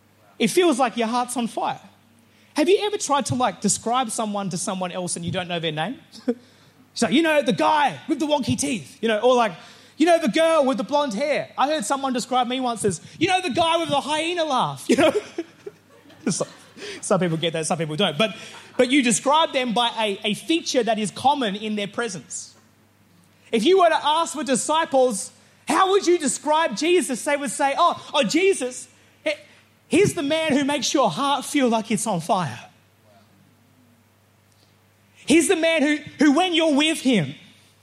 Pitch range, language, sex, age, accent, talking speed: 215-310 Hz, English, male, 30-49, Australian, 195 wpm